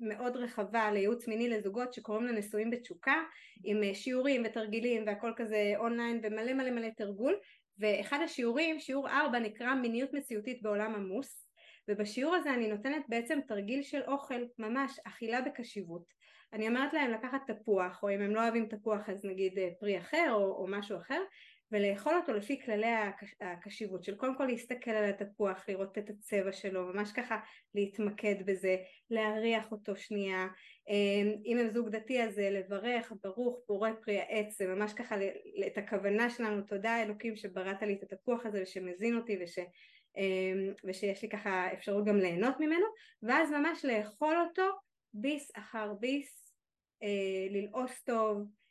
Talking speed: 150 wpm